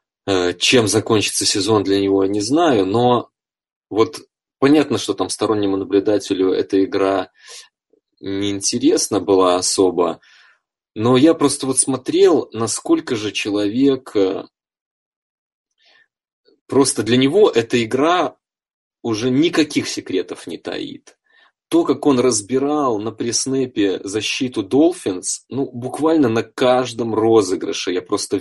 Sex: male